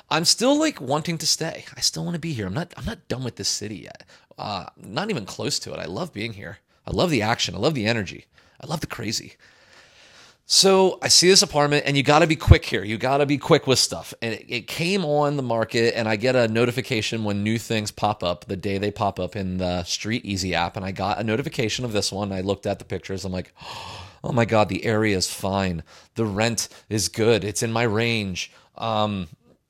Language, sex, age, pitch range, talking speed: English, male, 30-49, 110-150 Hz, 235 wpm